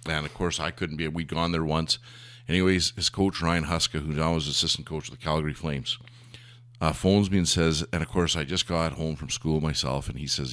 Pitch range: 75-115 Hz